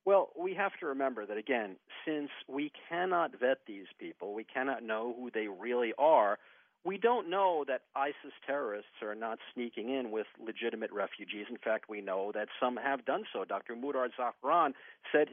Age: 50-69